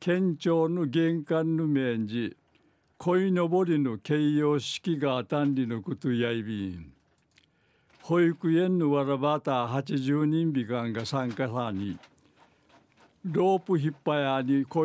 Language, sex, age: Japanese, male, 60-79